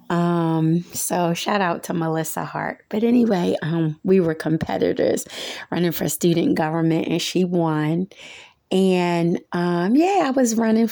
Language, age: English, 30-49